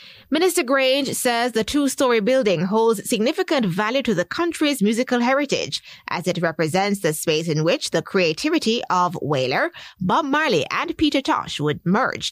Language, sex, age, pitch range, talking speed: English, female, 20-39, 180-265 Hz, 155 wpm